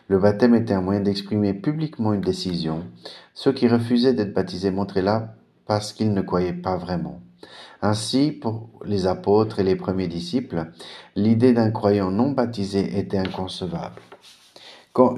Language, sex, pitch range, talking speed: French, male, 95-110 Hz, 150 wpm